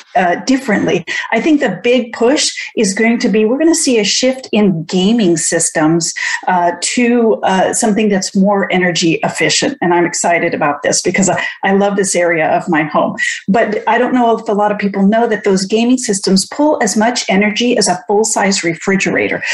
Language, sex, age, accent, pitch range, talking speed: English, female, 40-59, American, 190-235 Hz, 200 wpm